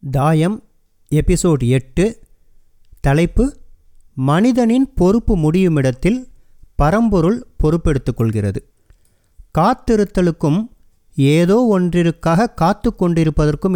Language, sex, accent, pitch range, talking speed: Tamil, male, native, 135-190 Hz, 60 wpm